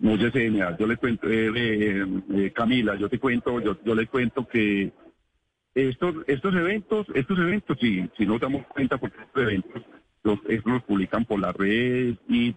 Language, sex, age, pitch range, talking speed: Spanish, male, 50-69, 110-140 Hz, 180 wpm